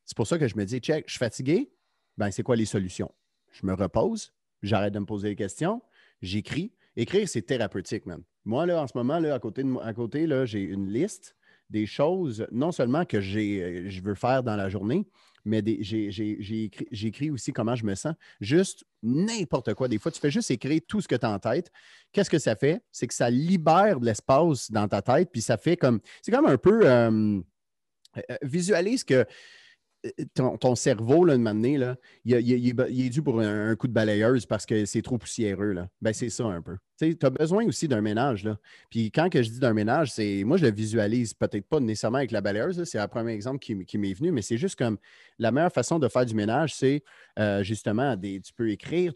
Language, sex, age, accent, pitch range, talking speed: French, male, 30-49, Canadian, 105-150 Hz, 230 wpm